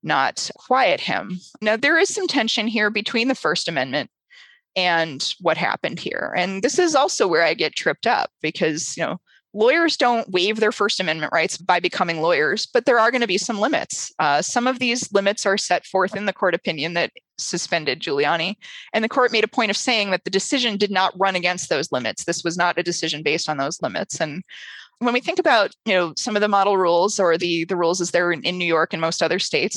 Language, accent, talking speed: English, American, 230 wpm